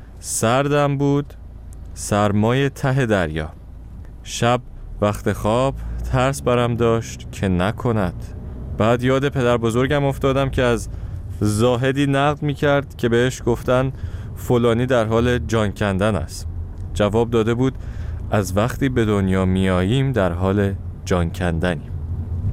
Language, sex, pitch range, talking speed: Persian, male, 95-130 Hz, 120 wpm